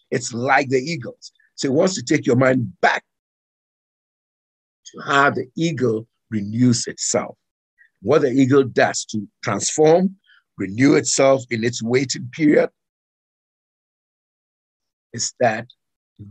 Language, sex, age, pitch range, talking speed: English, male, 50-69, 100-130 Hz, 120 wpm